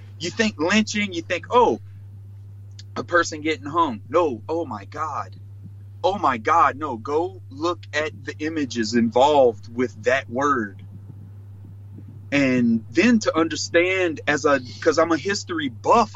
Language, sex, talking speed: English, male, 140 wpm